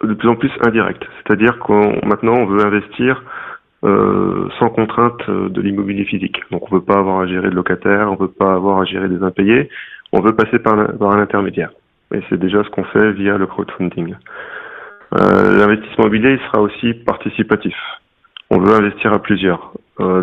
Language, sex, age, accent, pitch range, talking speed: French, male, 40-59, French, 95-110 Hz, 195 wpm